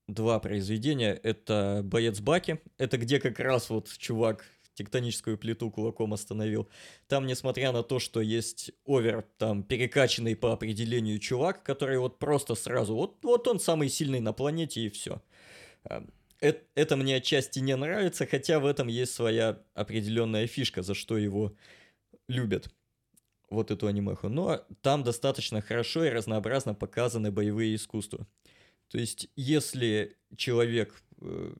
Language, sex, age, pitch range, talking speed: Russian, male, 20-39, 105-140 Hz, 135 wpm